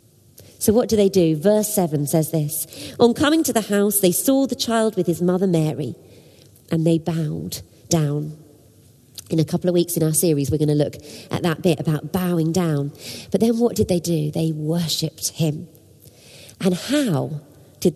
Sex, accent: female, British